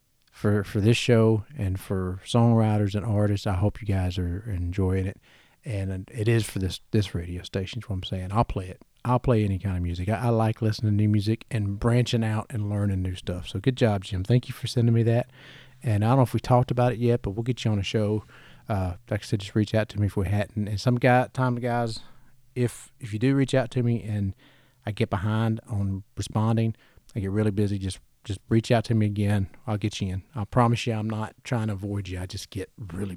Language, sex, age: English, male, 40-59